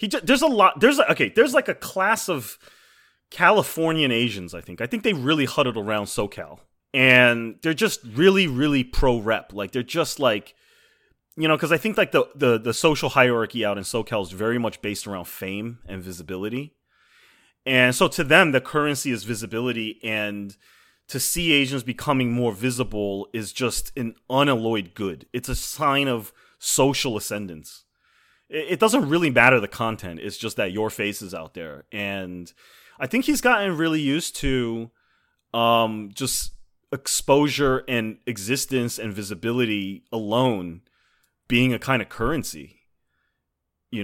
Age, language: 30-49, English